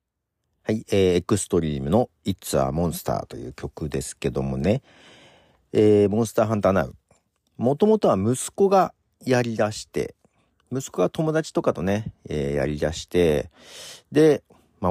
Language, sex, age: Japanese, male, 50-69